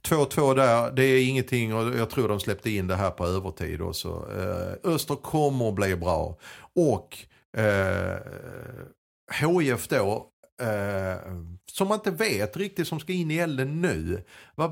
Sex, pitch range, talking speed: male, 90-130 Hz, 150 wpm